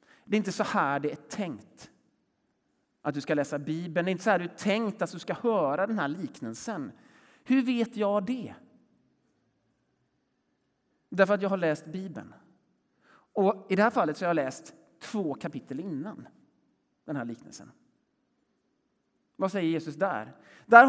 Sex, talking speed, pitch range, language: male, 165 wpm, 185-245 Hz, Swedish